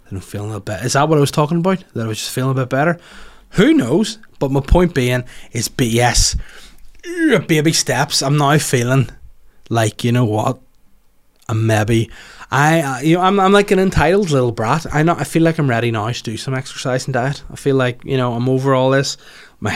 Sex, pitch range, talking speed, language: male, 115-145 Hz, 215 wpm, English